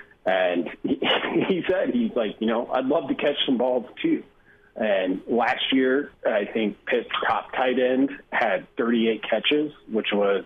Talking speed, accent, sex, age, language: 165 wpm, American, male, 40-59, English